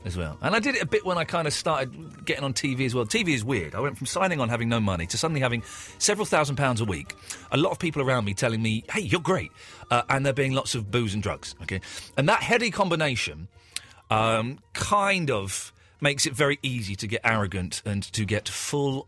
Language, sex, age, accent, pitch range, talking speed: English, male, 40-59, British, 95-140 Hz, 240 wpm